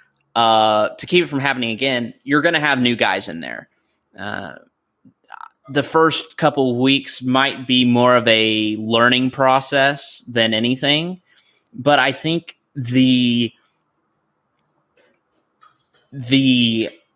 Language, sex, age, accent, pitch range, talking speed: English, male, 20-39, American, 115-135 Hz, 120 wpm